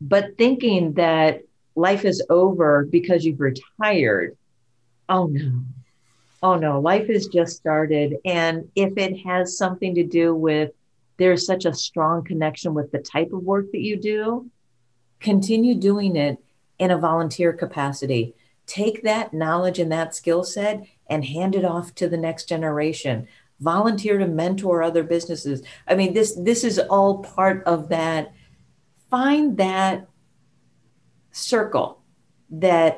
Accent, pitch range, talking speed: American, 155-195 Hz, 140 wpm